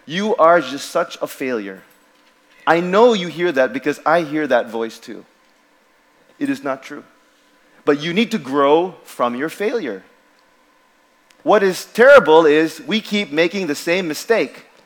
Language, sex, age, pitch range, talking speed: English, male, 30-49, 155-250 Hz, 160 wpm